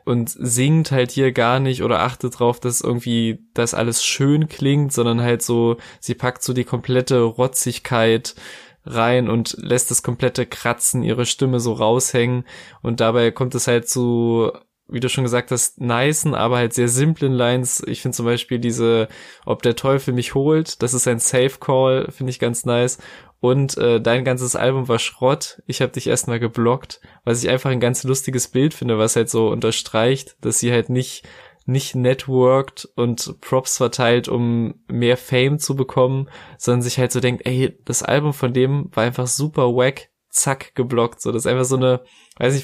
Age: 20-39